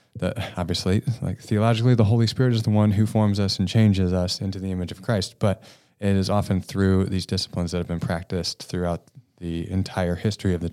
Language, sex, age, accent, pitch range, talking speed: English, male, 20-39, American, 90-115 Hz, 215 wpm